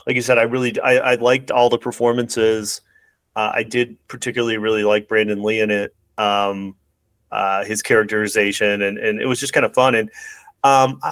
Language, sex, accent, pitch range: English, male, American, 105-135 Hz